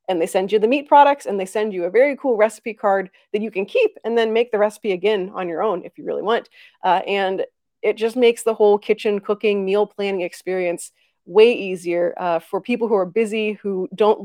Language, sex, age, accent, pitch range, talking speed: English, female, 30-49, American, 195-255 Hz, 230 wpm